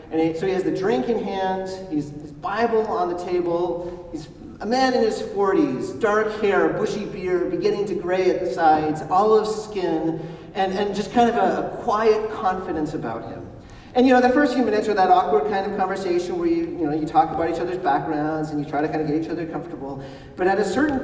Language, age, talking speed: English, 40-59, 230 wpm